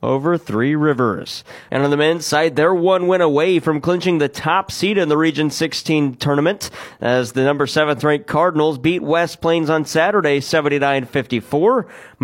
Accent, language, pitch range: American, English, 130-165 Hz